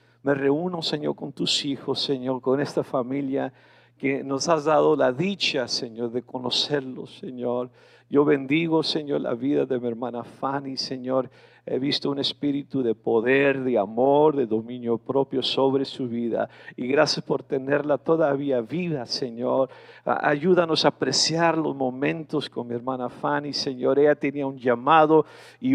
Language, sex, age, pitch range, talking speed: English, male, 50-69, 135-160 Hz, 155 wpm